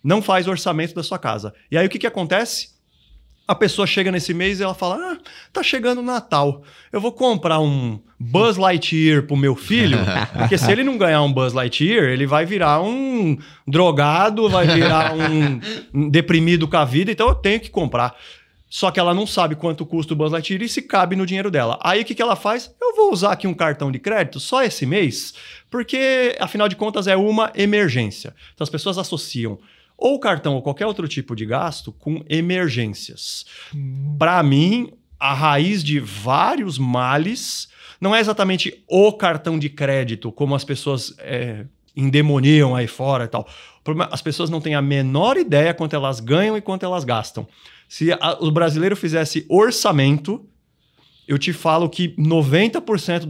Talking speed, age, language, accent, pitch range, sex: 180 wpm, 30-49, Portuguese, Brazilian, 140-195 Hz, male